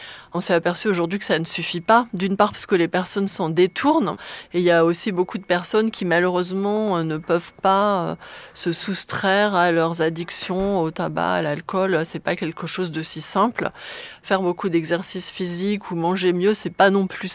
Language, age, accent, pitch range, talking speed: French, 30-49, French, 170-200 Hz, 200 wpm